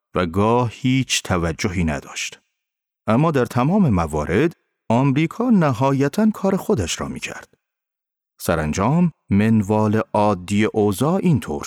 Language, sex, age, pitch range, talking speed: Persian, male, 40-59, 95-150 Hz, 110 wpm